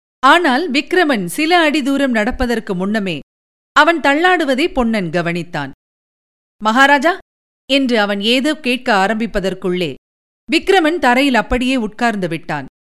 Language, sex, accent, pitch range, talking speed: Tamil, female, native, 200-280 Hz, 95 wpm